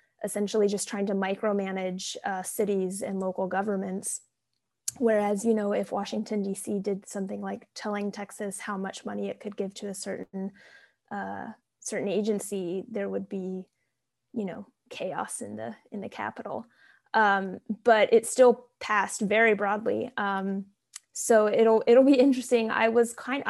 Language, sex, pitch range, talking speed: English, female, 195-220 Hz, 155 wpm